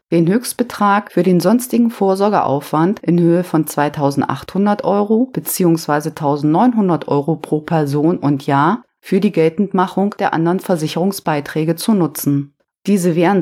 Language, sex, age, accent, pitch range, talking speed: German, female, 30-49, German, 160-195 Hz, 125 wpm